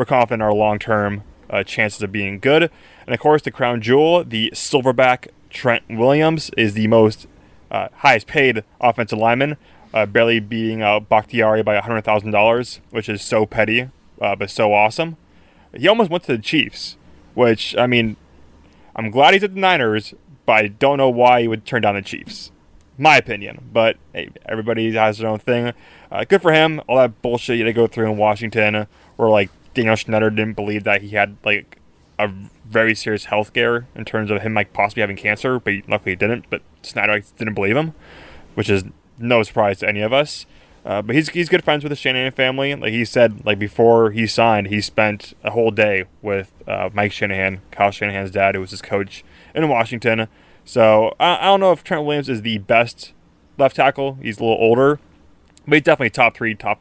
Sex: male